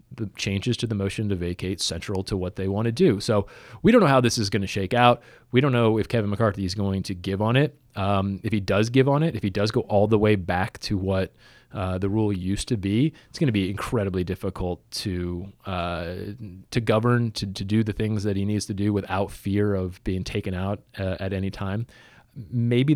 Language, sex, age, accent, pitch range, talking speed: English, male, 30-49, American, 95-120 Hz, 240 wpm